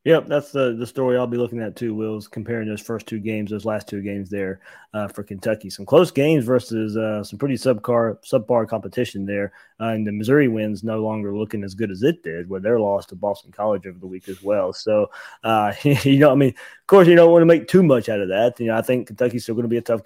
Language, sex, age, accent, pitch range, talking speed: English, male, 20-39, American, 105-130 Hz, 270 wpm